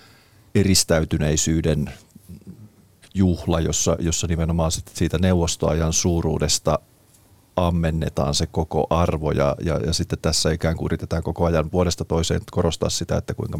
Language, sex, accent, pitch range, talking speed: Finnish, male, native, 80-95 Hz, 125 wpm